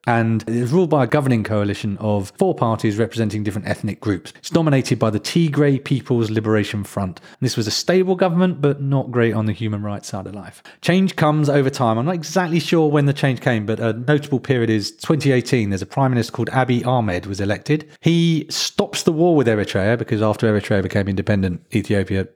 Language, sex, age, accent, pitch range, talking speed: English, male, 40-59, British, 105-140 Hz, 210 wpm